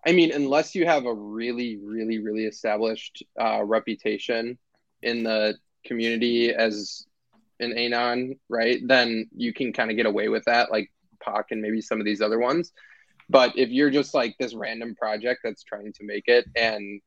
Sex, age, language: male, 20-39, English